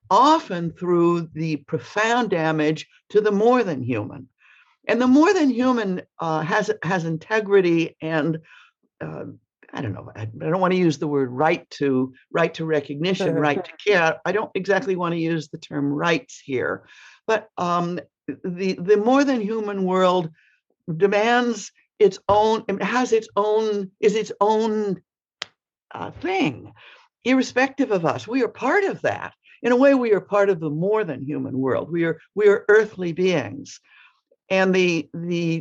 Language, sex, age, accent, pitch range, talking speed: English, female, 60-79, American, 160-220 Hz, 165 wpm